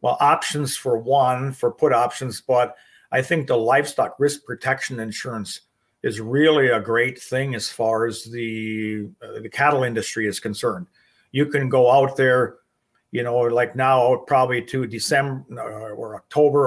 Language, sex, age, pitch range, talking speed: English, male, 50-69, 120-140 Hz, 160 wpm